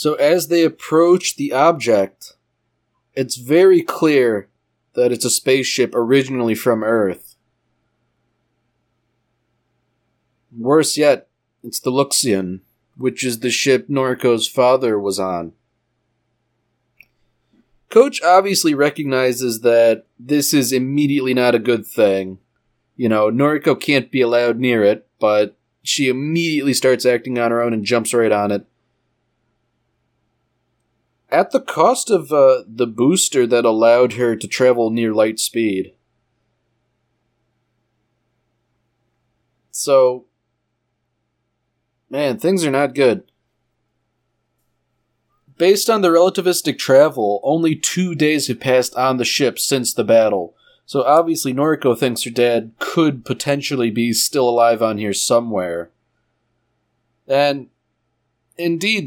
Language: English